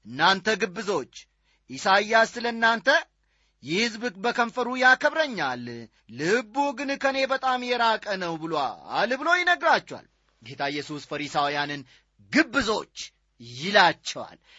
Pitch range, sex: 160-245 Hz, male